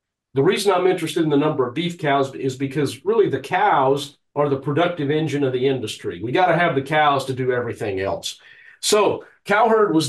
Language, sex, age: English, male, 50-69